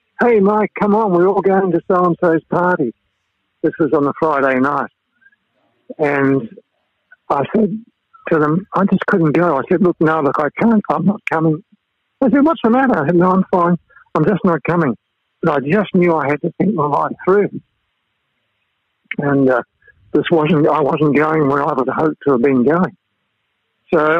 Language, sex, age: English, male, 60-79